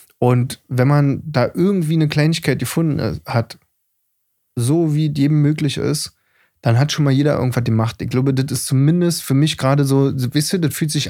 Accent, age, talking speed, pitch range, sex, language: German, 20-39, 190 wpm, 115-145 Hz, male, German